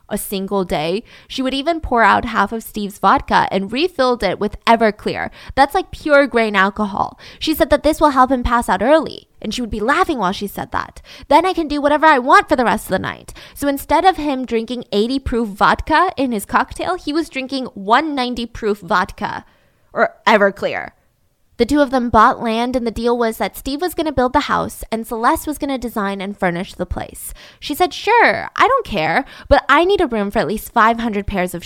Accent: American